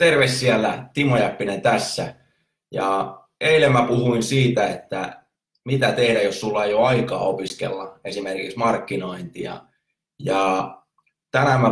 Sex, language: male, Finnish